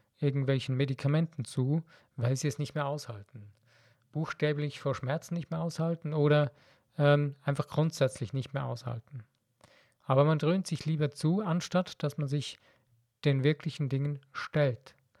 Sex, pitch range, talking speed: male, 125-150 Hz, 140 wpm